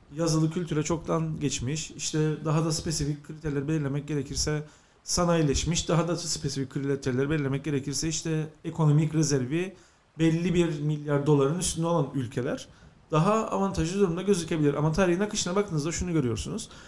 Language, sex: English, male